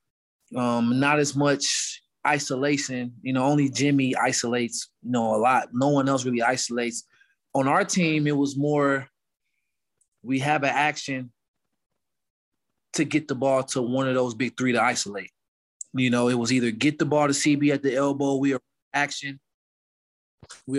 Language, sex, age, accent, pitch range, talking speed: English, male, 20-39, American, 130-145 Hz, 160 wpm